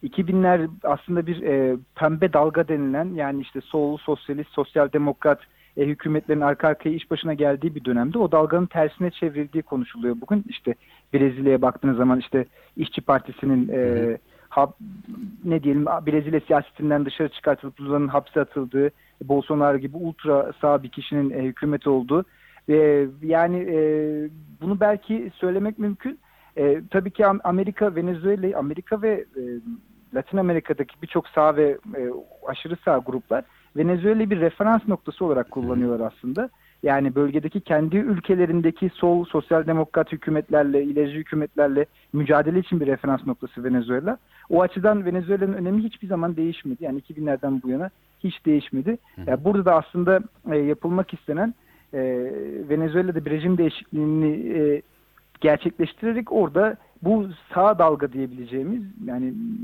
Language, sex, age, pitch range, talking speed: Turkish, male, 40-59, 140-185 Hz, 135 wpm